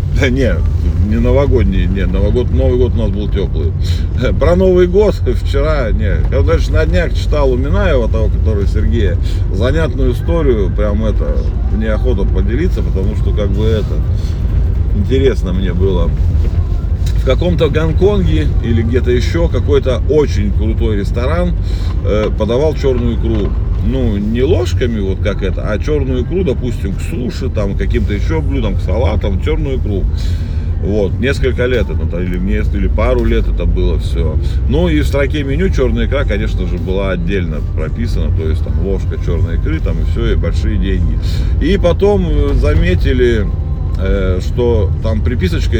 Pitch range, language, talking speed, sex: 80-95 Hz, Russian, 155 wpm, male